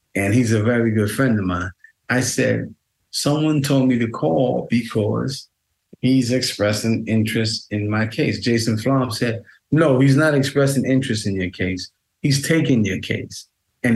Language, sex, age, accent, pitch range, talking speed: English, male, 30-49, American, 100-125 Hz, 165 wpm